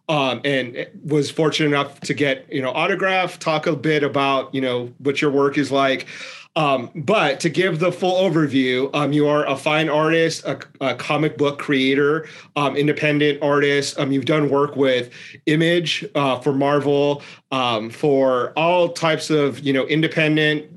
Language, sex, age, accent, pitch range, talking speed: English, male, 30-49, American, 135-150 Hz, 170 wpm